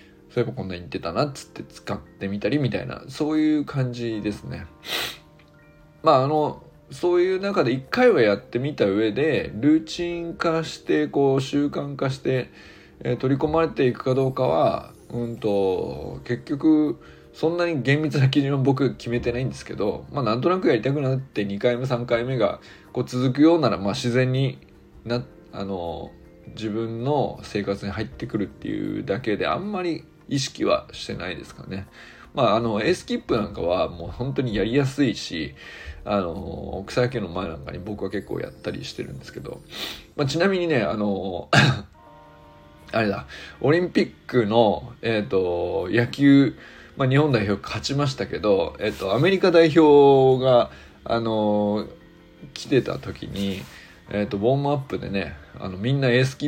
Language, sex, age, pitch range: Japanese, male, 20-39, 105-150 Hz